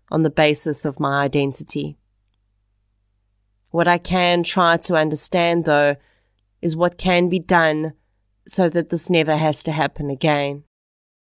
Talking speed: 140 wpm